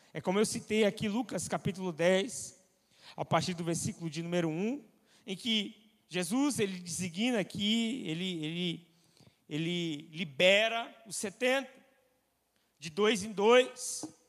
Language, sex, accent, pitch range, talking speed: Portuguese, male, Brazilian, 180-220 Hz, 130 wpm